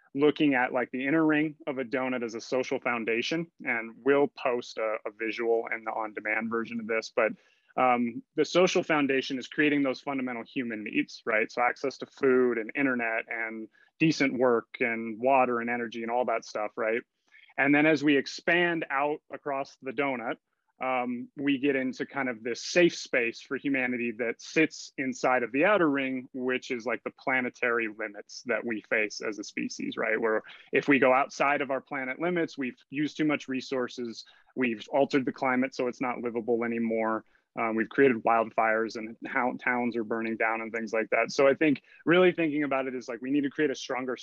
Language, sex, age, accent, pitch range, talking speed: English, male, 30-49, American, 115-145 Hz, 200 wpm